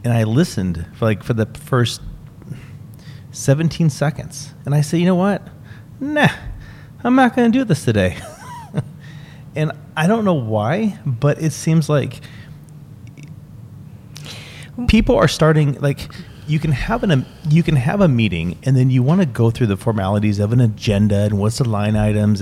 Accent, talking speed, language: American, 170 wpm, English